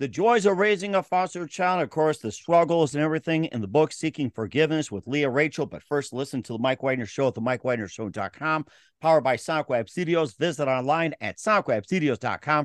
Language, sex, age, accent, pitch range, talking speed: English, male, 50-69, American, 120-160 Hz, 195 wpm